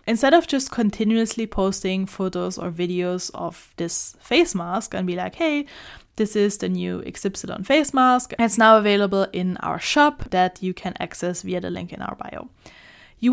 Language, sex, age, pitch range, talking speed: English, female, 10-29, 180-220 Hz, 180 wpm